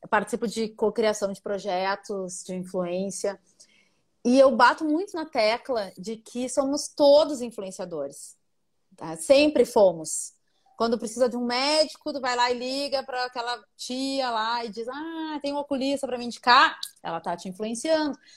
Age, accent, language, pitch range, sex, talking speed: 30-49, Brazilian, Portuguese, 215-270 Hz, female, 160 wpm